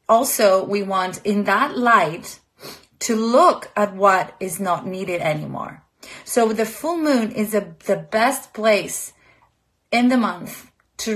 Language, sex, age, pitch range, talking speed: Greek, female, 30-49, 190-220 Hz, 140 wpm